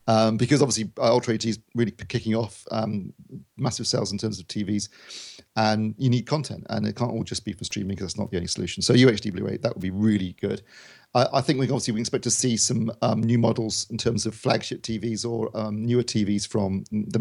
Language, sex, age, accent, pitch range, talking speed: English, male, 40-59, British, 105-125 Hz, 235 wpm